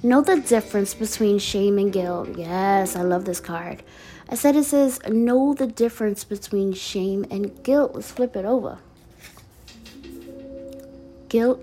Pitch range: 180-240 Hz